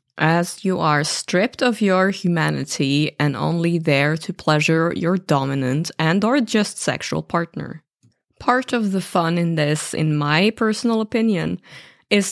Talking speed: 145 wpm